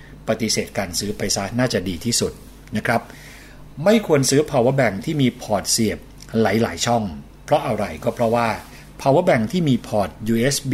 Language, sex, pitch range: Thai, male, 105-130 Hz